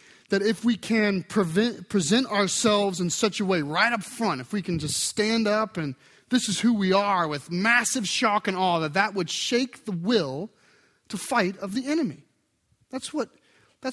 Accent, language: American, English